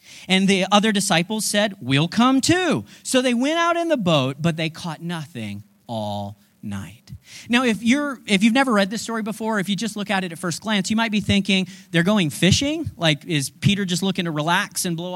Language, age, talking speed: English, 40-59, 220 wpm